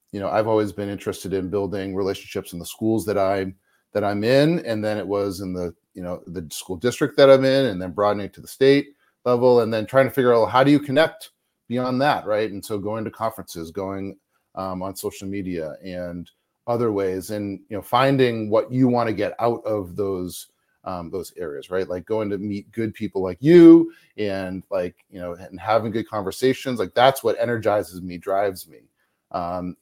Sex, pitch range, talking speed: male, 95-130 Hz, 210 wpm